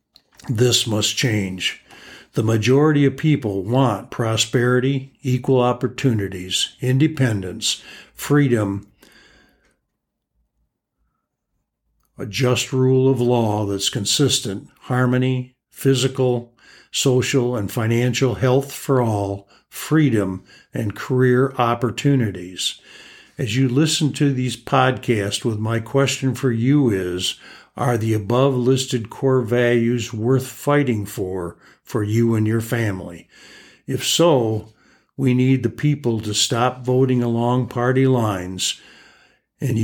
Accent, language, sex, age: American, English, male, 60-79